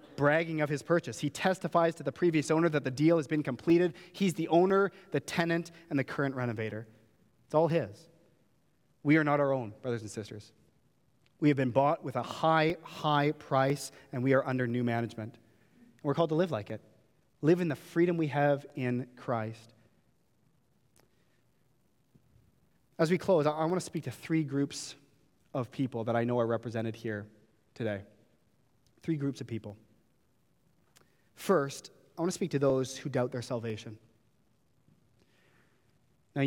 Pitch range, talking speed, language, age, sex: 120-160 Hz, 165 wpm, English, 30-49, male